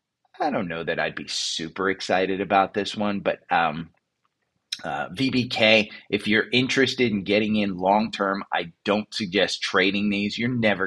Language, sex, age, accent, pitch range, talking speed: English, male, 30-49, American, 95-115 Hz, 160 wpm